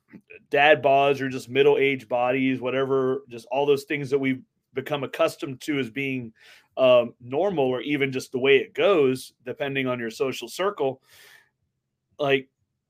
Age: 30-49